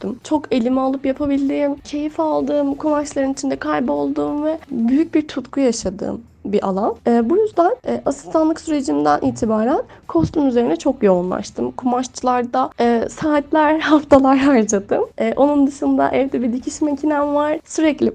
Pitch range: 220-295 Hz